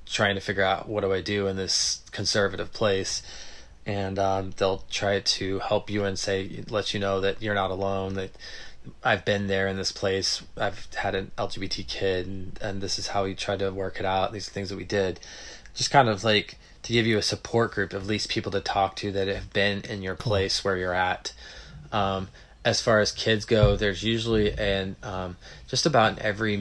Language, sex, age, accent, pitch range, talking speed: English, male, 20-39, American, 95-105 Hz, 215 wpm